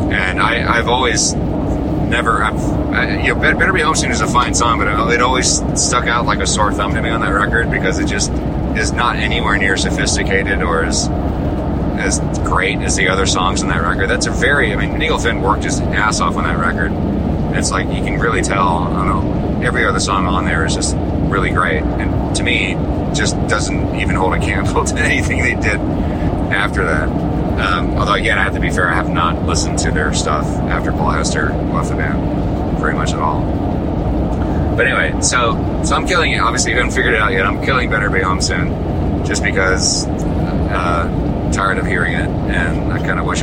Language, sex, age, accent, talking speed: English, male, 30-49, American, 215 wpm